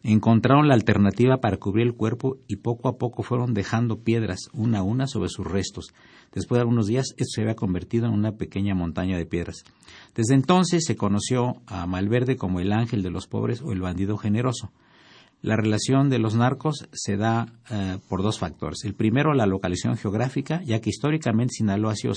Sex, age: male, 50-69